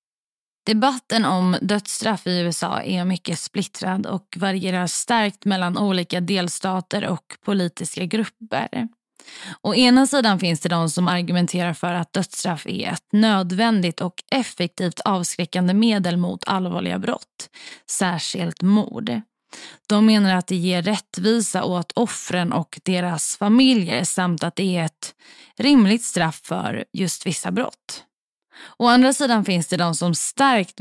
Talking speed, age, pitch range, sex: 135 wpm, 20-39, 180-220 Hz, female